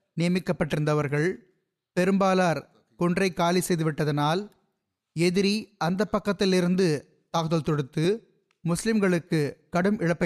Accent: native